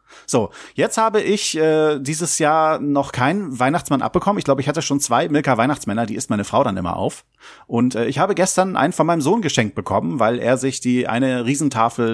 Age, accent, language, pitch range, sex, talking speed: 40-59, German, German, 110-150 Hz, male, 210 wpm